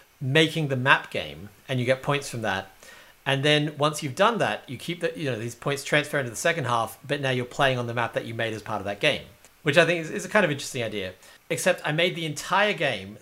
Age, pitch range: 40-59, 130-170 Hz